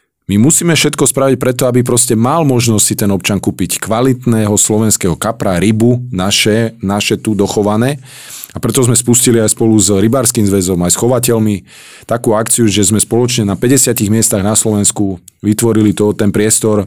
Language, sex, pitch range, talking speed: Slovak, male, 95-115 Hz, 165 wpm